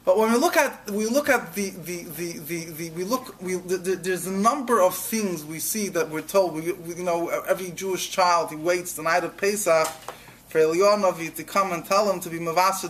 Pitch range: 160-190 Hz